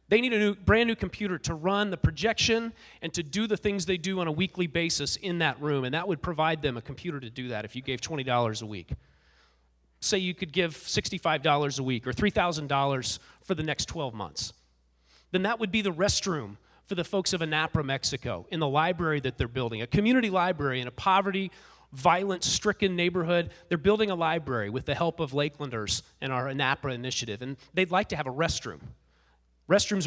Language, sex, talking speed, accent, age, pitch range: English, male, 200 wpm, American, 30-49, 125-180 Hz